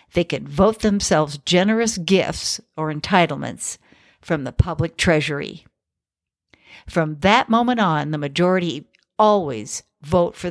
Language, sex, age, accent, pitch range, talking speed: English, female, 60-79, American, 165-230 Hz, 120 wpm